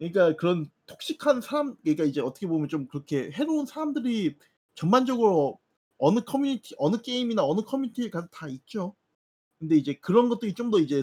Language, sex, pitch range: Korean, male, 150-230 Hz